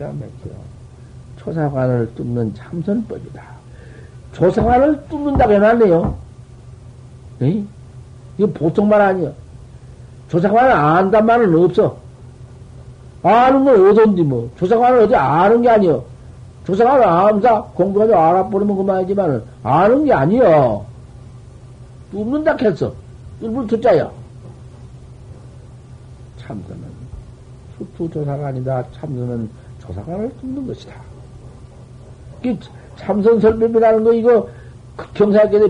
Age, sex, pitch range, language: 50-69, male, 125-205 Hz, Korean